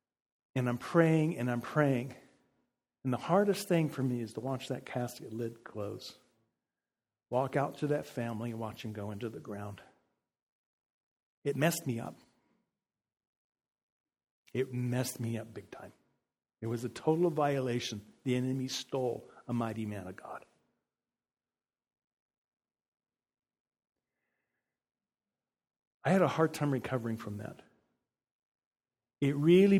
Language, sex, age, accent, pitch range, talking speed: English, male, 50-69, American, 115-145 Hz, 130 wpm